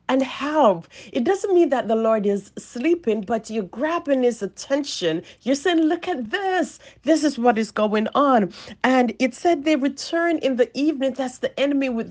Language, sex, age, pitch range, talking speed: English, female, 40-59, 220-285 Hz, 190 wpm